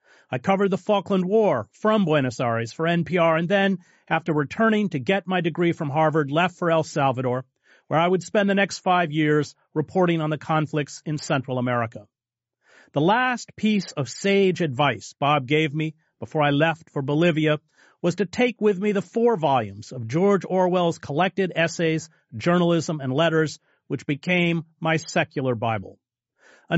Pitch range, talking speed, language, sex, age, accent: 140-185 Hz, 170 wpm, English, male, 40-59, American